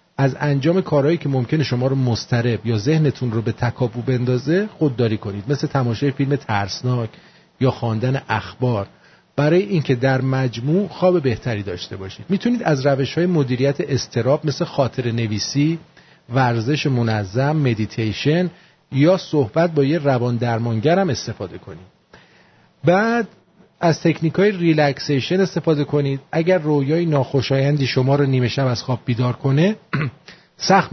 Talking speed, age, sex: 135 wpm, 40-59, male